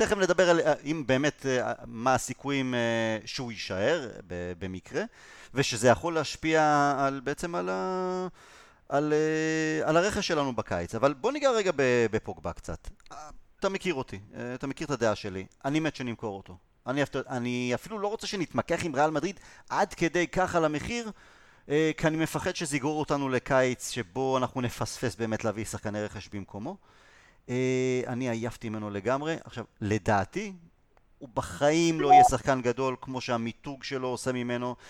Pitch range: 120-155 Hz